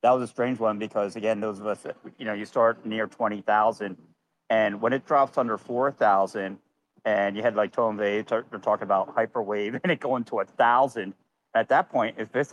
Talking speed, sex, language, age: 205 wpm, male, English, 50-69